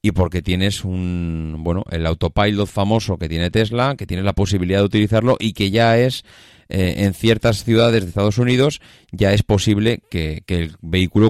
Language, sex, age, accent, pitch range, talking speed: Spanish, male, 30-49, Spanish, 95-130 Hz, 185 wpm